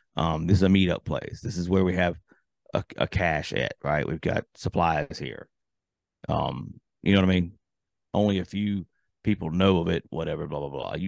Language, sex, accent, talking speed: English, male, American, 205 wpm